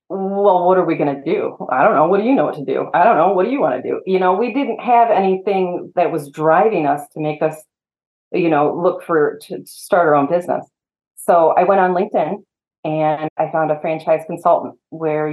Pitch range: 155-195 Hz